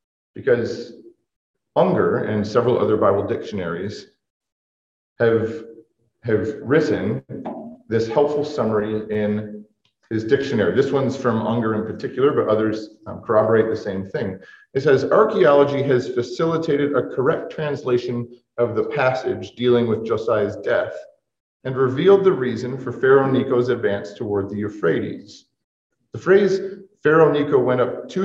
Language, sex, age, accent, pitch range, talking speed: English, male, 40-59, American, 110-145 Hz, 130 wpm